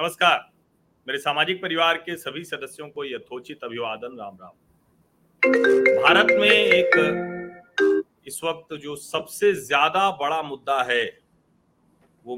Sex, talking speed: male, 115 wpm